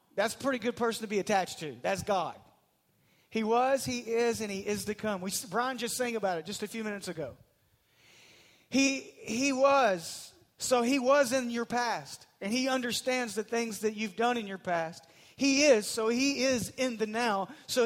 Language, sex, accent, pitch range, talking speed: English, male, American, 185-250 Hz, 200 wpm